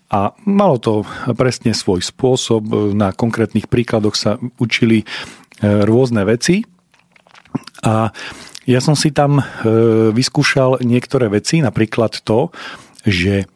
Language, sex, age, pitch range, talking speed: Slovak, male, 40-59, 110-140 Hz, 105 wpm